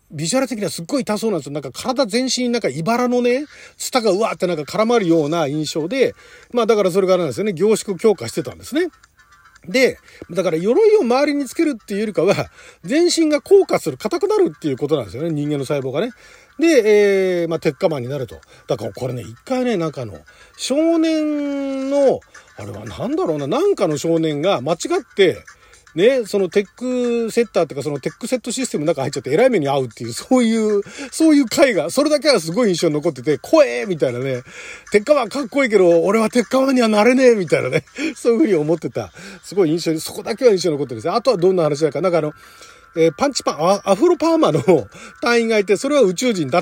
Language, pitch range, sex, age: Japanese, 160-260 Hz, male, 40-59